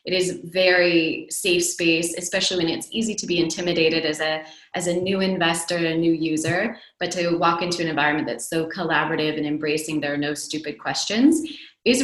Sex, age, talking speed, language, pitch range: female, 20-39, 190 wpm, English, 155-195 Hz